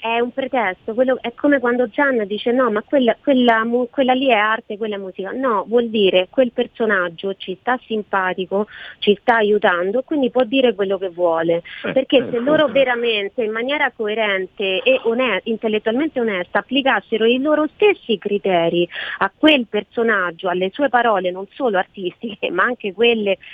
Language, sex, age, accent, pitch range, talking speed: Italian, female, 30-49, native, 195-250 Hz, 170 wpm